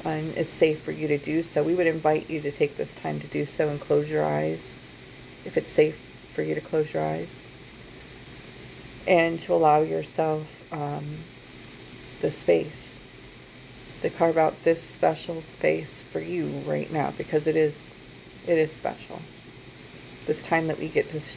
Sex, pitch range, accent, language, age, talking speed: female, 125-170 Hz, American, English, 30-49, 170 wpm